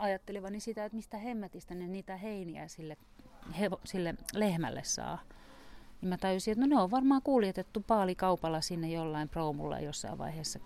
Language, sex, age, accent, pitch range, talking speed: Finnish, female, 40-59, native, 155-195 Hz, 160 wpm